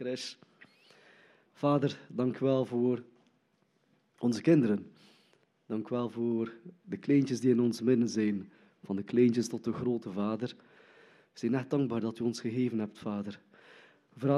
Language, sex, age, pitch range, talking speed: Dutch, male, 20-39, 115-140 Hz, 140 wpm